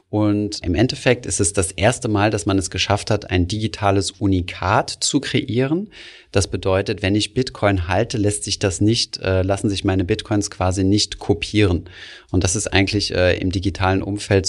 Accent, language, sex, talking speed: German, German, male, 175 wpm